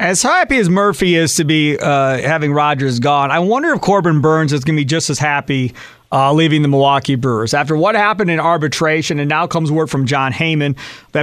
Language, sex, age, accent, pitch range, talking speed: English, male, 40-59, American, 140-175 Hz, 220 wpm